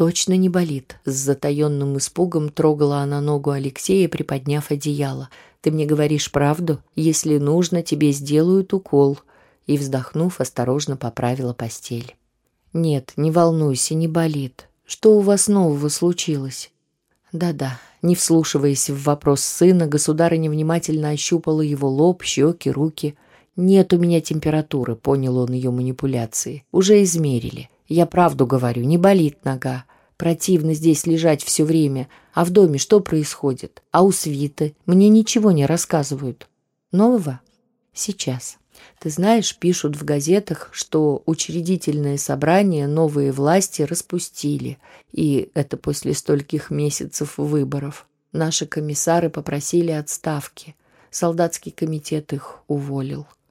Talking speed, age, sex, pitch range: 120 wpm, 20-39, female, 140-170 Hz